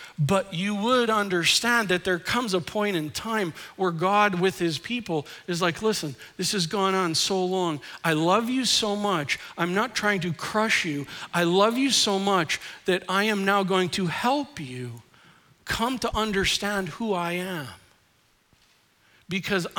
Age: 50-69